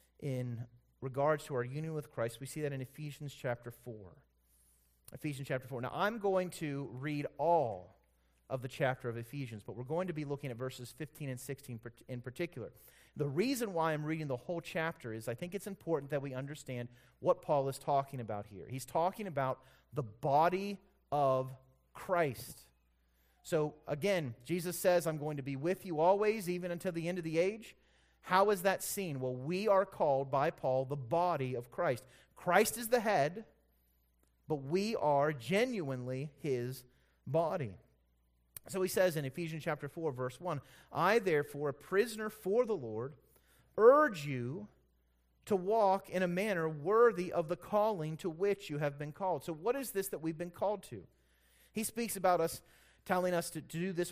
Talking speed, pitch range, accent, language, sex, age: 180 wpm, 125-180 Hz, American, English, male, 30-49